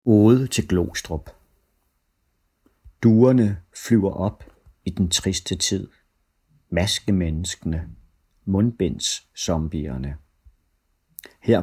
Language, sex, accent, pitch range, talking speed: Danish, male, native, 80-100 Hz, 65 wpm